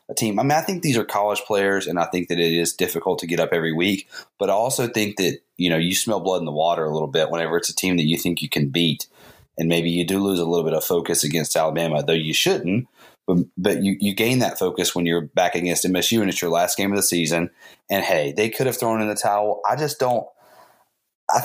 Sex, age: male, 30-49